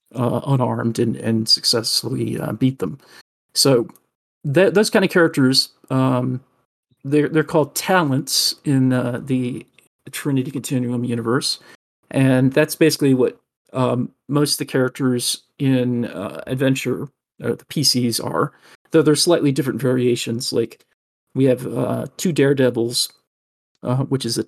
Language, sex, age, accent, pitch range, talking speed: English, male, 40-59, American, 125-145 Hz, 135 wpm